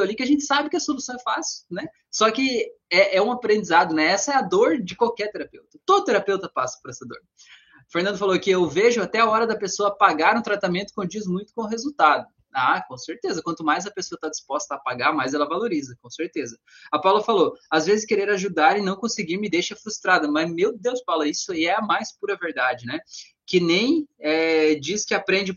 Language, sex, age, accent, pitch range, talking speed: Portuguese, male, 20-39, Brazilian, 165-230 Hz, 225 wpm